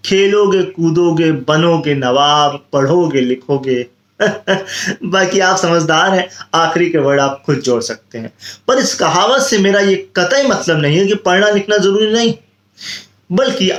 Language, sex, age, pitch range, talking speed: Hindi, male, 20-39, 130-195 Hz, 150 wpm